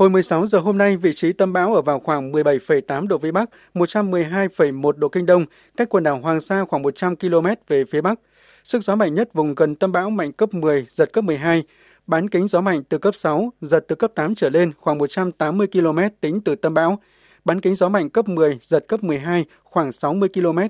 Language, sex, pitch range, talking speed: Vietnamese, male, 155-200 Hz, 225 wpm